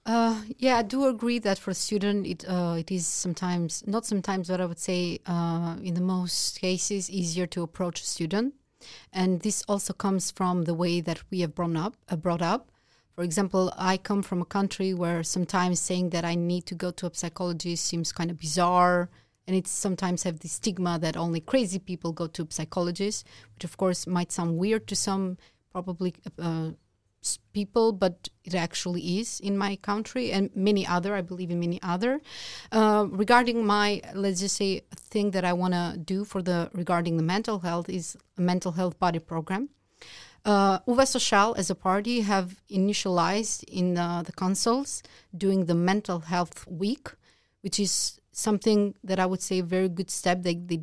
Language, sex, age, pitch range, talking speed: English, female, 30-49, 175-200 Hz, 190 wpm